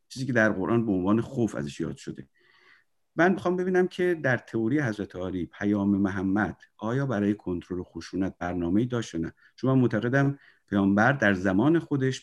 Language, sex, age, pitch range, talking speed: Persian, male, 50-69, 95-135 Hz, 160 wpm